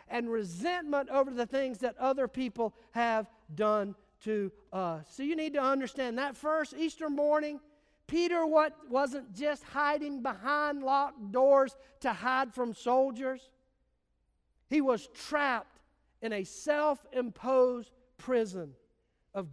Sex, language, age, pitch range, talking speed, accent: male, English, 50-69, 220-280 Hz, 125 wpm, American